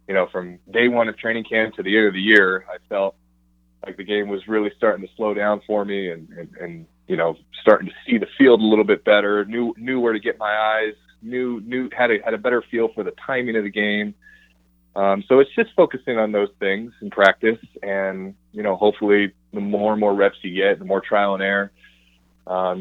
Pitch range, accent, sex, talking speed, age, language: 90-110 Hz, American, male, 235 wpm, 20-39, English